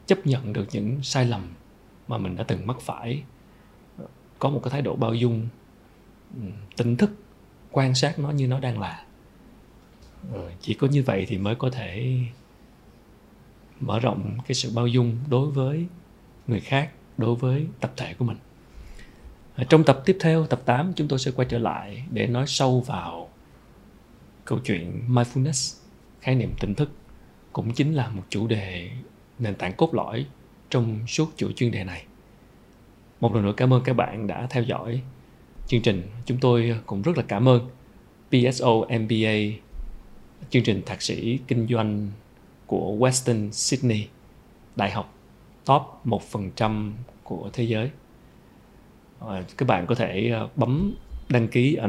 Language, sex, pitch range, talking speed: Vietnamese, male, 110-130 Hz, 160 wpm